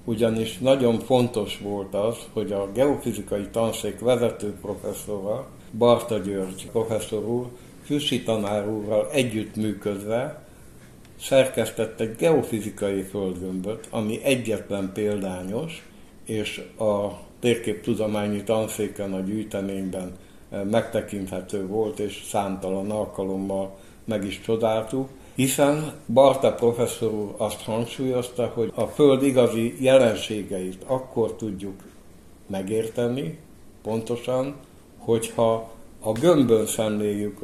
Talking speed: 95 wpm